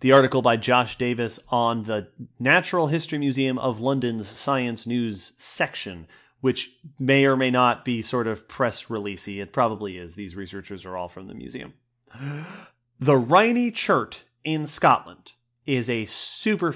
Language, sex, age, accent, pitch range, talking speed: English, male, 30-49, American, 115-145 Hz, 155 wpm